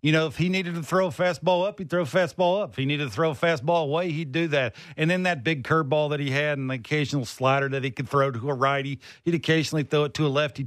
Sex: male